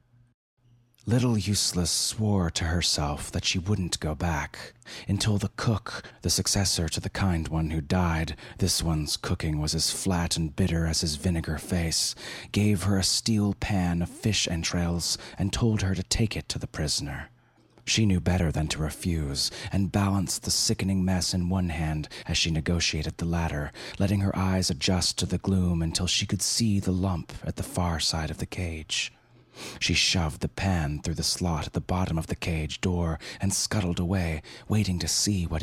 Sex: male